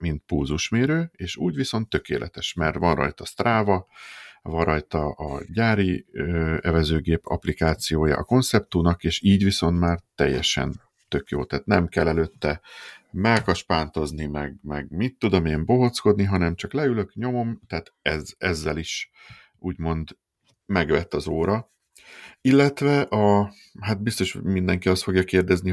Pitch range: 80-105 Hz